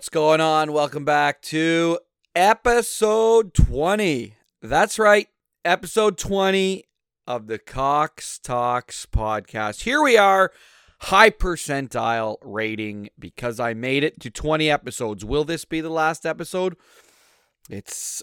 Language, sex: English, male